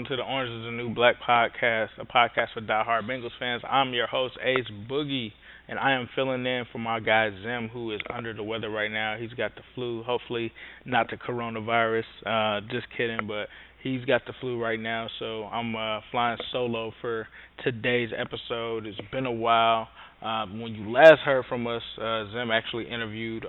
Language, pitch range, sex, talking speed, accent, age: English, 115-125 Hz, male, 195 wpm, American, 20-39